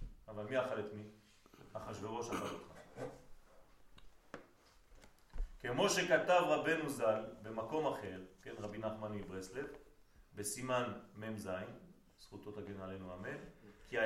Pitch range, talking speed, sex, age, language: 100-155 Hz, 100 wpm, male, 40-59, French